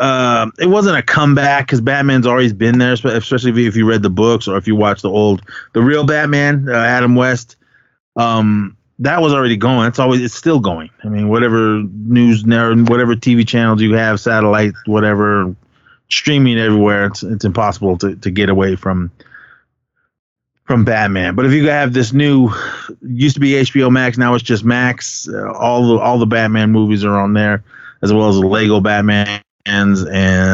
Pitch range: 100-125 Hz